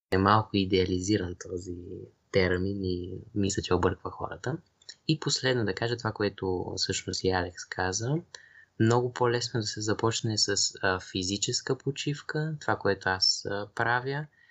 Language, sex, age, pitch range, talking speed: Bulgarian, male, 20-39, 100-125 Hz, 130 wpm